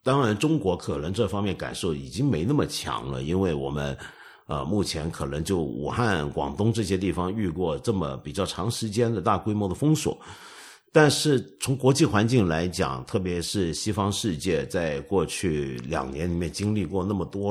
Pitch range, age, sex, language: 85-115 Hz, 50-69, male, Chinese